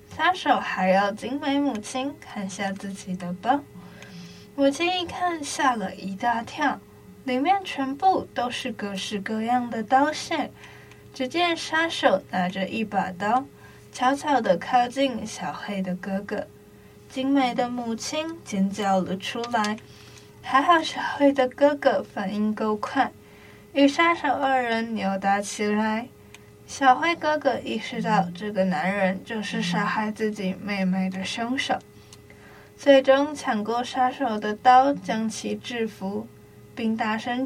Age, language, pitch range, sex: 10-29, Chinese, 195-270 Hz, female